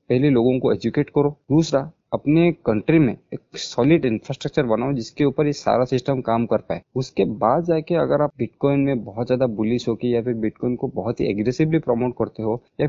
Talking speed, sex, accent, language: 200 wpm, male, native, Hindi